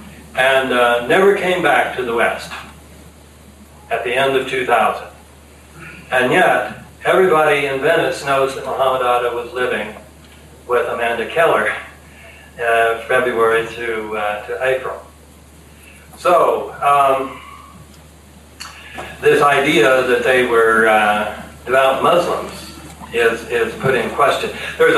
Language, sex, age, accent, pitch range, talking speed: English, male, 60-79, American, 80-130 Hz, 120 wpm